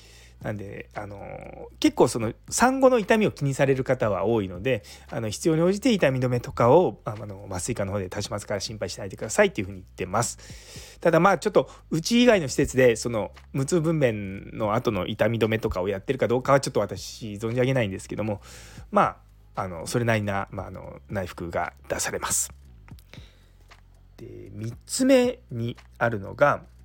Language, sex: Japanese, male